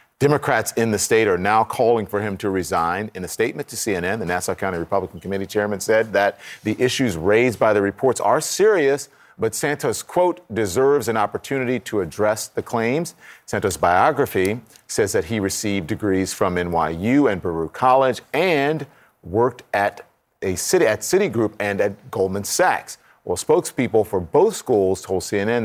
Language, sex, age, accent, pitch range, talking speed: English, male, 40-59, American, 95-120 Hz, 170 wpm